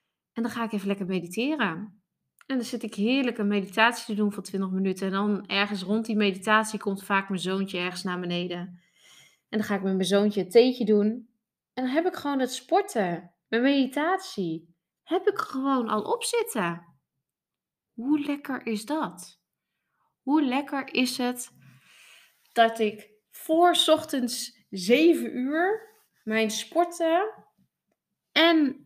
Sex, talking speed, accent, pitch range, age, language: female, 150 wpm, Dutch, 195-275 Hz, 20-39, Dutch